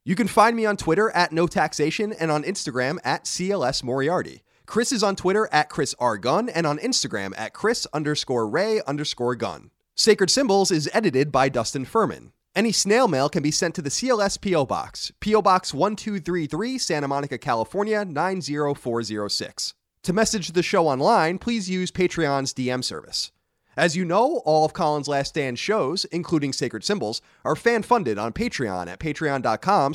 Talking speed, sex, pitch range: 180 wpm, male, 135-195 Hz